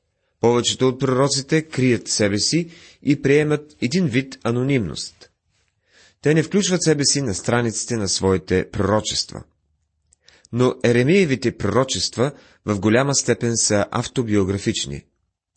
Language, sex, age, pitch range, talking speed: Bulgarian, male, 30-49, 105-140 Hz, 110 wpm